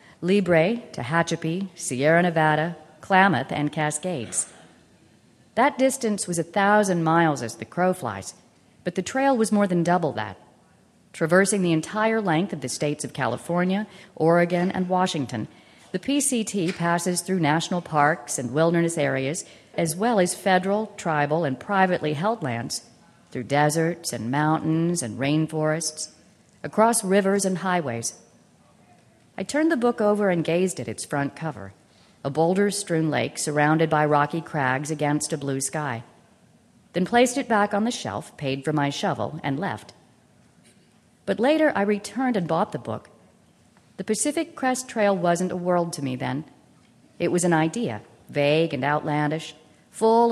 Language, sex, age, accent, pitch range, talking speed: English, female, 40-59, American, 145-195 Hz, 150 wpm